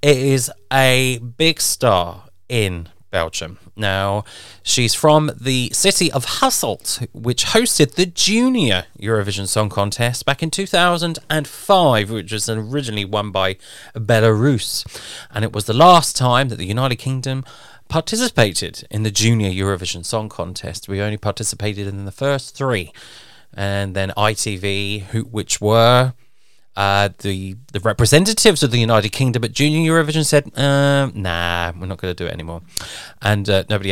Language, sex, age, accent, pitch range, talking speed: English, male, 20-39, British, 100-130 Hz, 145 wpm